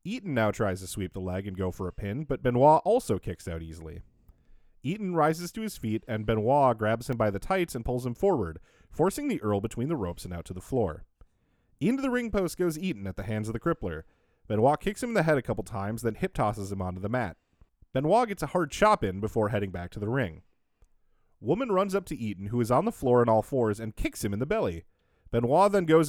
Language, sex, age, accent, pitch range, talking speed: English, male, 30-49, American, 95-145 Hz, 245 wpm